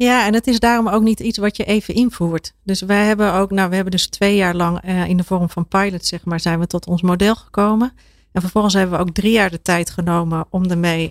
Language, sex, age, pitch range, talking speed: Dutch, female, 40-59, 180-210 Hz, 265 wpm